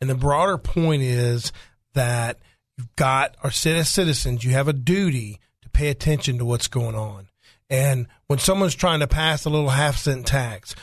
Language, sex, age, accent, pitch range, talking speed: English, male, 40-59, American, 125-165 Hz, 175 wpm